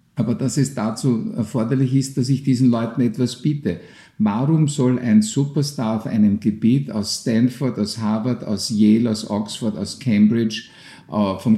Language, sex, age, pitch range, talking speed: German, male, 50-69, 110-145 Hz, 155 wpm